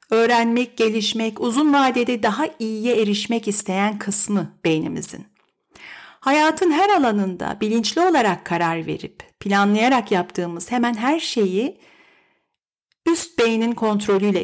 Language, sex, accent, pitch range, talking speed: Turkish, female, native, 205-265 Hz, 105 wpm